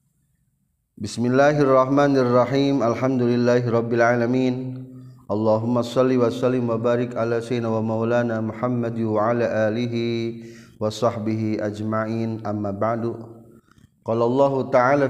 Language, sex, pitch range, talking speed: Indonesian, male, 120-145 Hz, 95 wpm